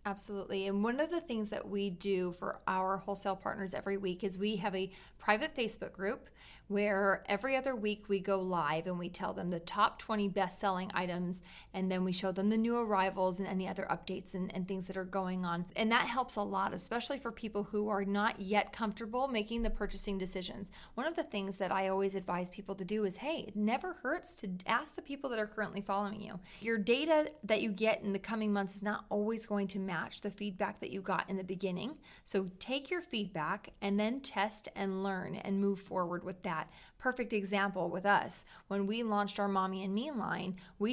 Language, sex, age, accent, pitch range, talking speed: English, female, 30-49, American, 190-220 Hz, 220 wpm